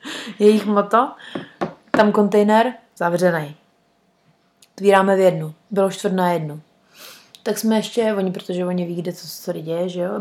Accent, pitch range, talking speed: native, 180-215 Hz, 155 wpm